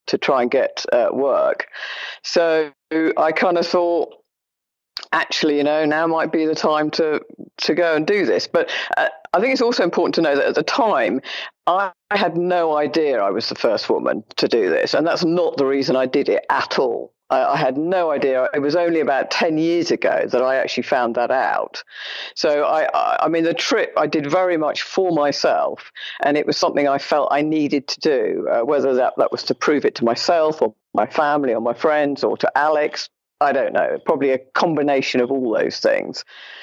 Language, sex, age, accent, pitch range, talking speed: English, female, 50-69, British, 145-175 Hz, 210 wpm